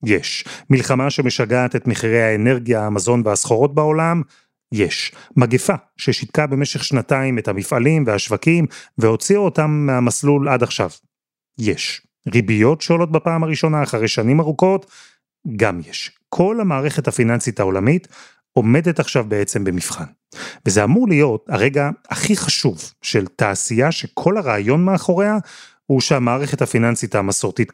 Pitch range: 120-155 Hz